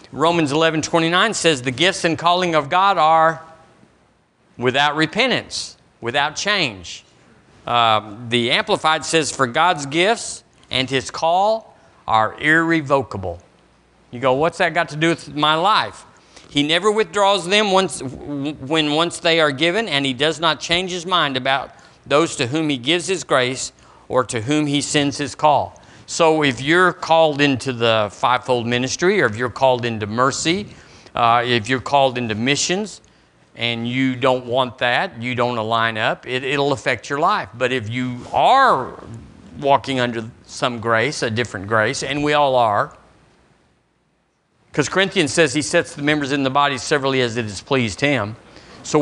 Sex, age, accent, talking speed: male, 50-69, American, 165 wpm